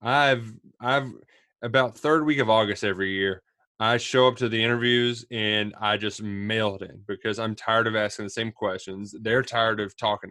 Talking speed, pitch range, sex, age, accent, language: 190 wpm, 105-135 Hz, male, 20-39, American, English